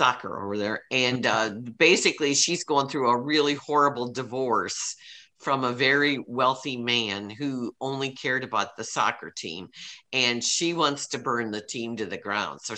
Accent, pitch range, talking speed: American, 125-170 Hz, 170 wpm